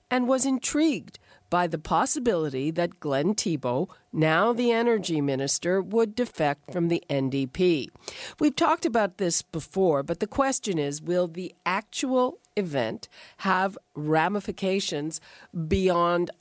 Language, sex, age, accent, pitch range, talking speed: English, female, 50-69, American, 155-210 Hz, 125 wpm